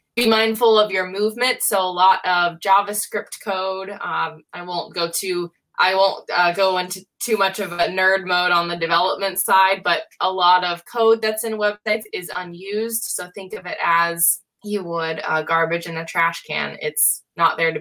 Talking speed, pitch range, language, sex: 195 wpm, 165-205 Hz, English, female